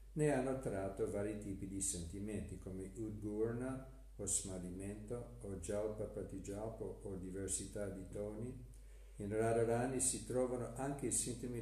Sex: male